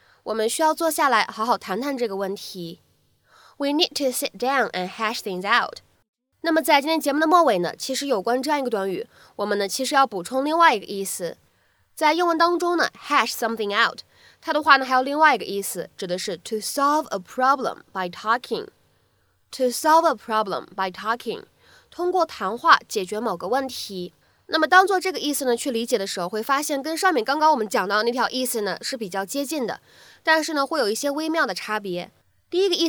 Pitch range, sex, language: 205-295 Hz, female, Chinese